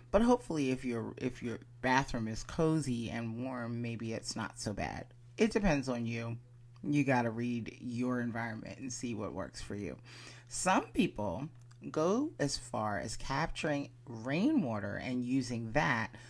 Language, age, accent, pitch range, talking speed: English, 30-49, American, 120-140 Hz, 160 wpm